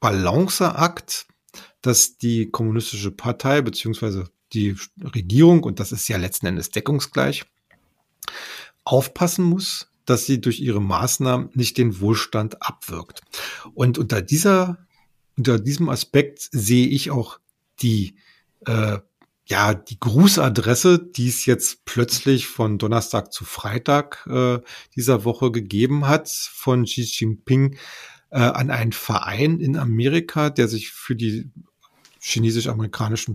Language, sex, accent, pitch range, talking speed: German, male, German, 110-140 Hz, 120 wpm